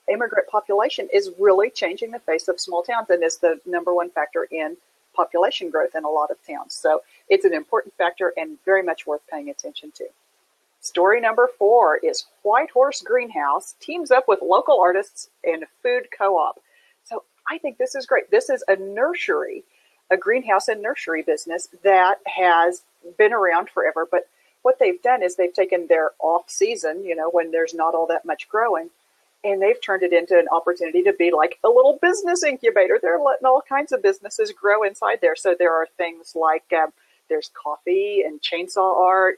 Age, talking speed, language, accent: 40-59, 190 wpm, English, American